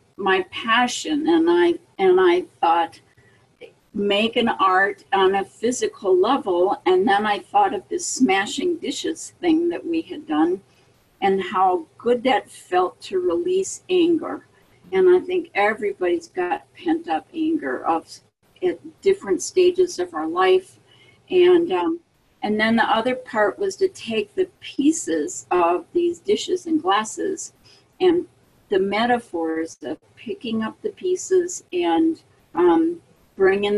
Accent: American